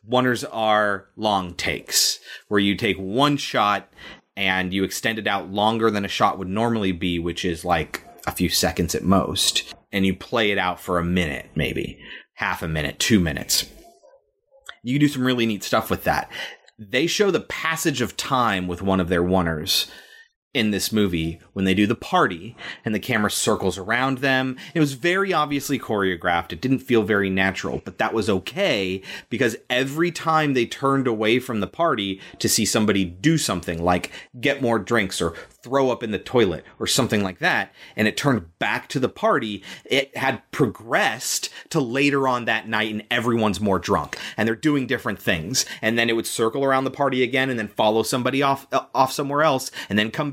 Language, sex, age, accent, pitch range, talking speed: English, male, 30-49, American, 95-135 Hz, 195 wpm